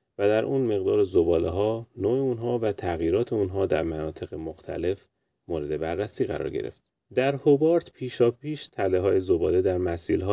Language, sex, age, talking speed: Persian, male, 30-49, 155 wpm